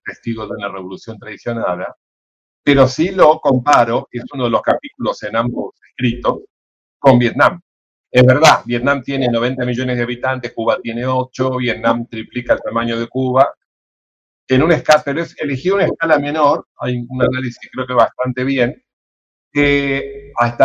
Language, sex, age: Spanish, male, 50-69